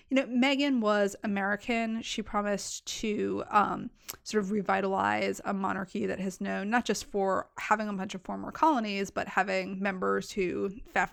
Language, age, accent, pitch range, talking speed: English, 20-39, American, 195-235 Hz, 165 wpm